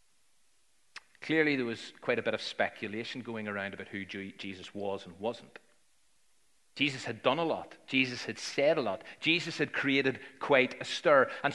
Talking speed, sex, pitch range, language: 170 wpm, male, 130-195 Hz, English